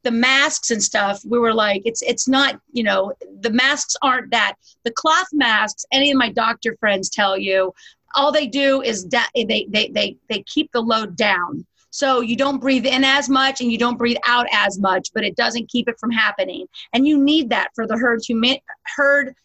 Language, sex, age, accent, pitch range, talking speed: English, female, 40-59, American, 220-275 Hz, 215 wpm